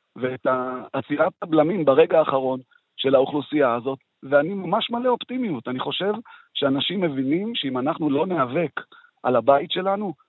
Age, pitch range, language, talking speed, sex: 40-59, 135-205 Hz, Hebrew, 135 wpm, male